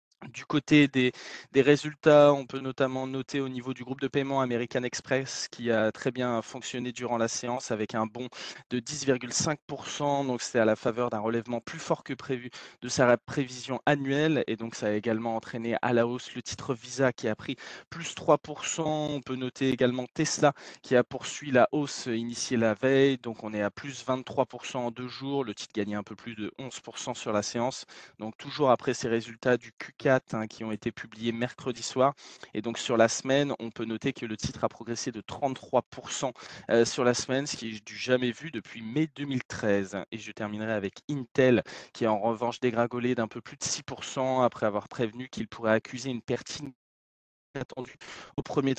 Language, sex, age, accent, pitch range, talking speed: French, male, 20-39, French, 115-135 Hz, 200 wpm